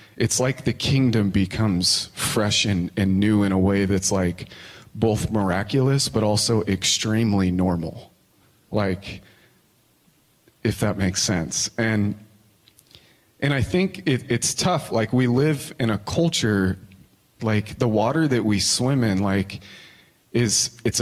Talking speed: 135 wpm